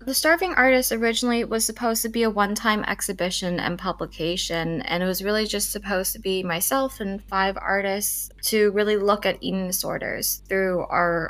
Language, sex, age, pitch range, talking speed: English, female, 20-39, 170-200 Hz, 175 wpm